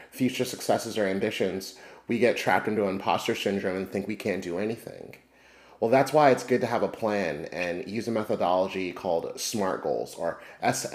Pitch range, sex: 100-125 Hz, male